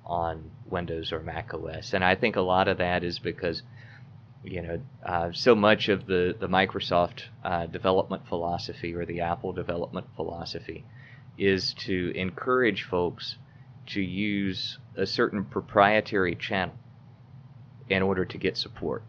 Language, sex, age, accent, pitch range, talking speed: English, male, 30-49, American, 95-125 Hz, 145 wpm